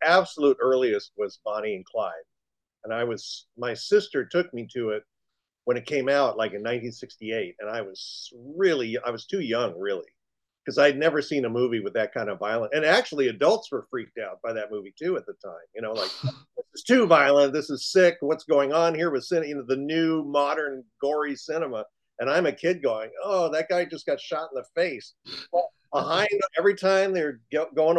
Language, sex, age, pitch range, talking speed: English, male, 50-69, 125-170 Hz, 210 wpm